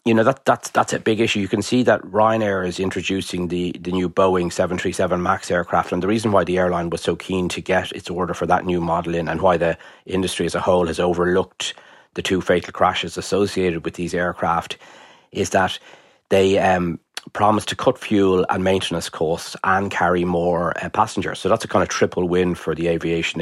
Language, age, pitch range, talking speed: English, 30-49, 85-95 Hz, 215 wpm